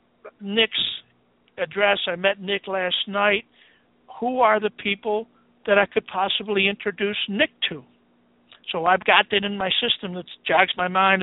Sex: male